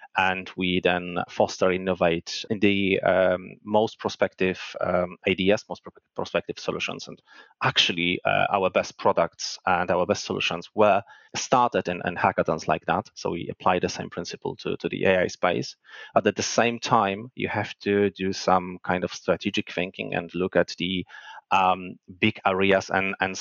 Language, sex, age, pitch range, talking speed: English, male, 30-49, 90-105 Hz, 170 wpm